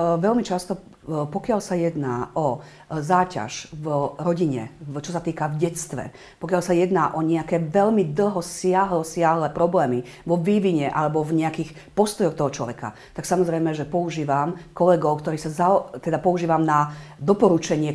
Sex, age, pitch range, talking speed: female, 50-69, 155-185 Hz, 140 wpm